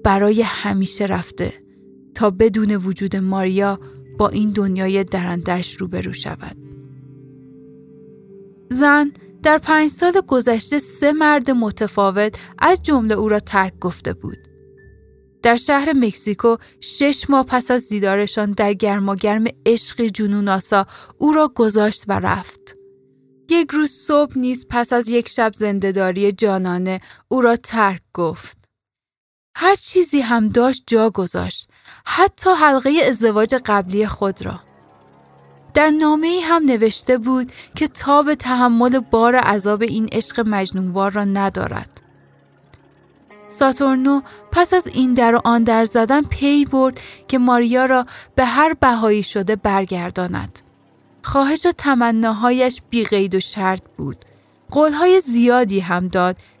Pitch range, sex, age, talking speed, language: 190-260 Hz, female, 10-29, 125 wpm, Persian